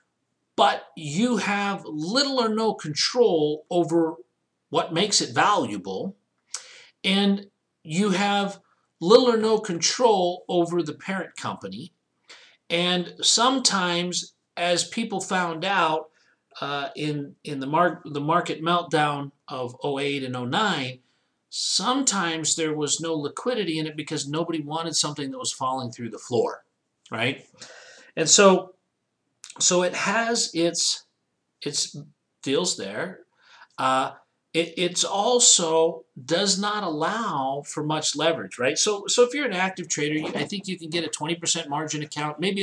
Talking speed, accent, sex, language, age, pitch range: 135 wpm, American, male, English, 50-69, 155-200 Hz